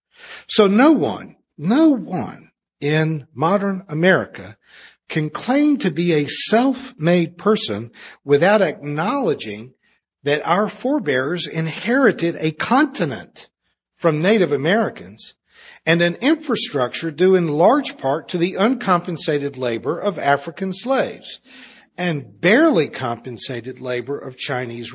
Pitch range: 135-185 Hz